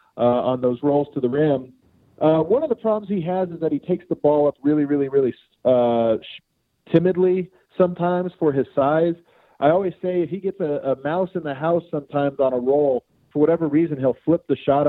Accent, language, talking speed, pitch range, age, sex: American, English, 220 wpm, 135-170 Hz, 40-59, male